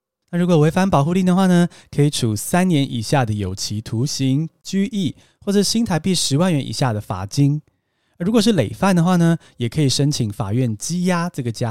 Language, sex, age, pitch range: Chinese, male, 20-39, 130-190 Hz